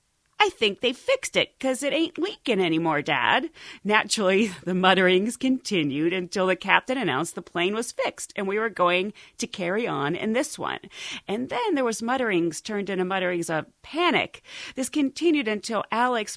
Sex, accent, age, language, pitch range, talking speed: female, American, 40-59, English, 180-270 Hz, 170 wpm